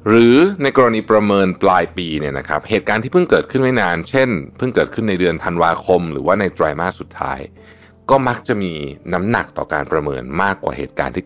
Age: 60-79